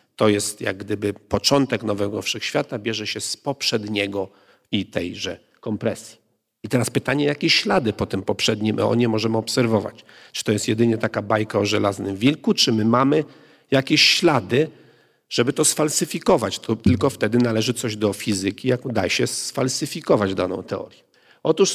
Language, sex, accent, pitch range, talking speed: Polish, male, native, 105-140 Hz, 155 wpm